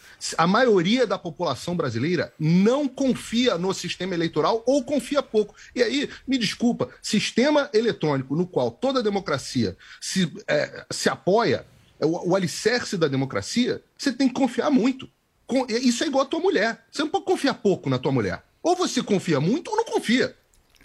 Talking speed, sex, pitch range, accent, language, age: 165 wpm, male, 170-265 Hz, Brazilian, Portuguese, 40-59